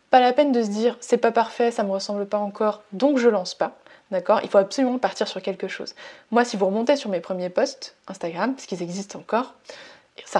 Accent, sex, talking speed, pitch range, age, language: French, female, 230 wpm, 200-265 Hz, 20-39, French